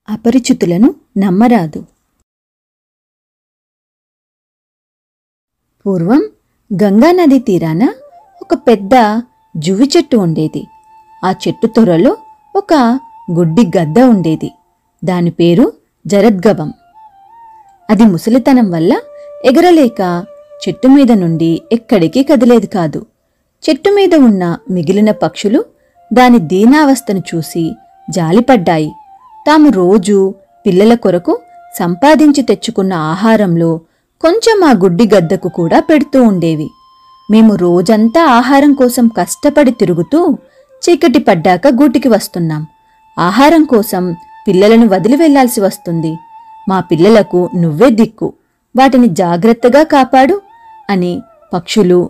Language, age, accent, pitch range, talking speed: Telugu, 30-49, native, 185-295 Hz, 85 wpm